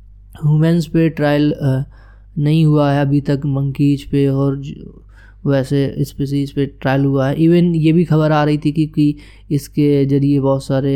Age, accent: 20-39, native